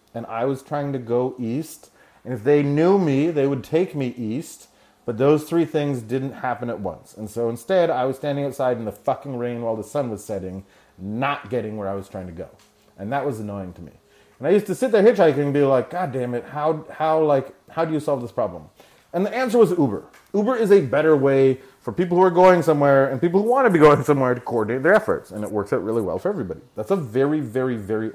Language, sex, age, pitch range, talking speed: English, male, 30-49, 110-155 Hz, 250 wpm